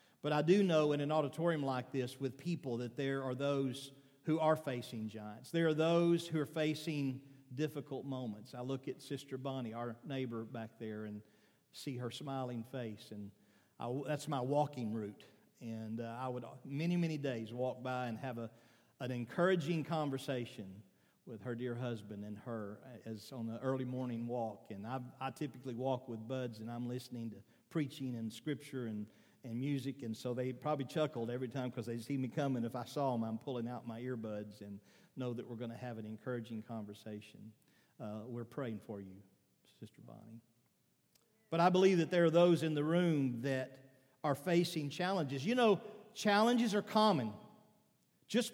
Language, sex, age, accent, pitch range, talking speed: English, male, 50-69, American, 115-155 Hz, 185 wpm